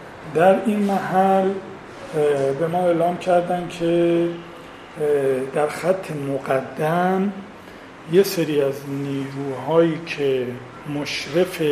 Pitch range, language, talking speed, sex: 140-175 Hz, English, 85 wpm, male